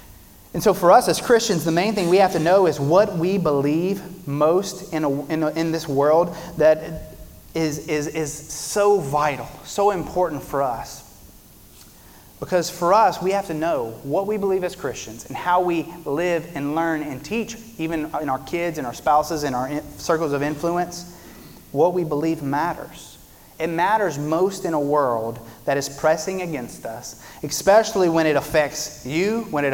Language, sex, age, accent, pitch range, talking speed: English, male, 30-49, American, 140-180 Hz, 180 wpm